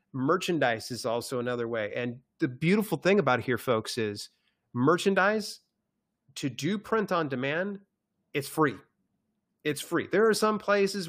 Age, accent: 30-49, American